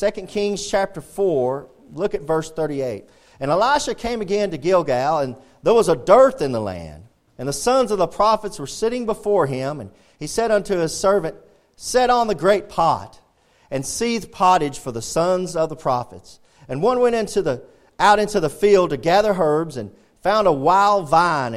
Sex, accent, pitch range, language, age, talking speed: male, American, 145-210 Hz, English, 40-59, 190 wpm